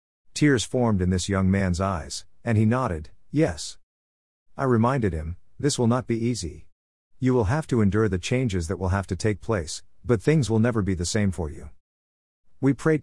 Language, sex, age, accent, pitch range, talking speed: English, male, 50-69, American, 85-115 Hz, 200 wpm